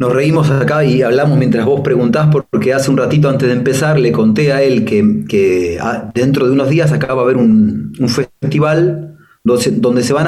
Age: 30-49